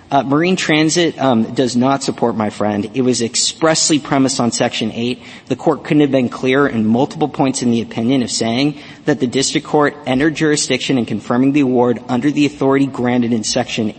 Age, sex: 40-59, male